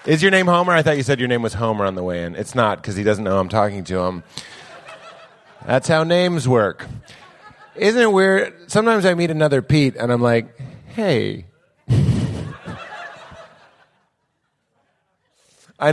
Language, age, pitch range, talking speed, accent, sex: English, 30-49, 125-190 Hz, 160 wpm, American, male